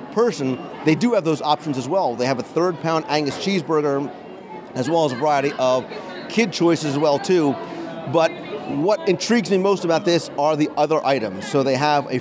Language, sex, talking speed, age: English, male, 200 wpm, 40-59